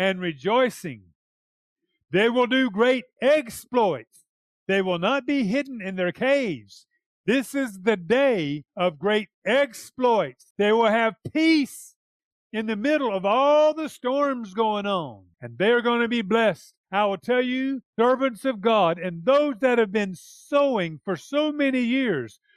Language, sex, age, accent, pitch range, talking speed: English, male, 50-69, American, 175-245 Hz, 155 wpm